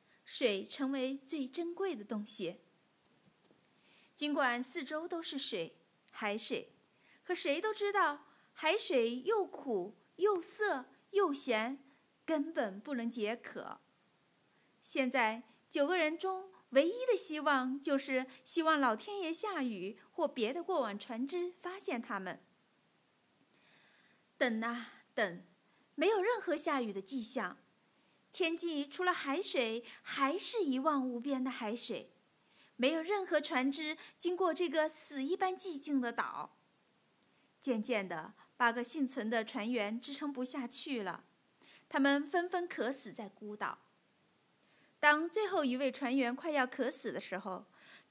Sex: female